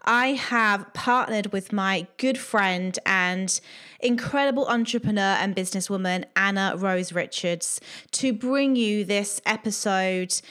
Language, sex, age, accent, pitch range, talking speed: English, female, 20-39, British, 195-245 Hz, 115 wpm